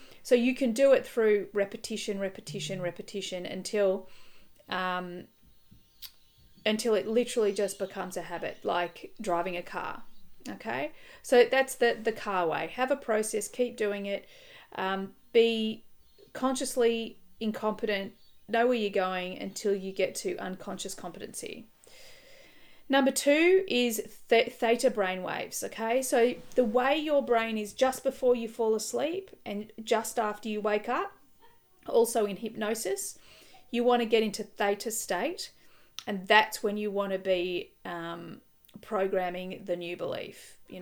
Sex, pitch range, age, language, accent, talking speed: female, 190-245 Hz, 40-59, English, Australian, 140 wpm